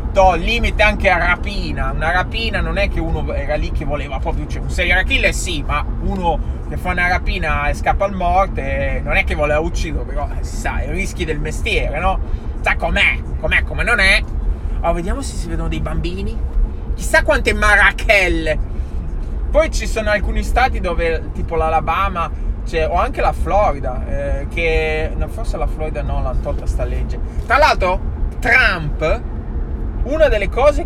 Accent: native